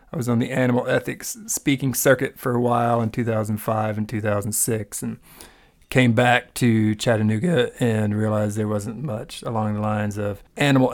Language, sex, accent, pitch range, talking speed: English, male, American, 110-135 Hz, 160 wpm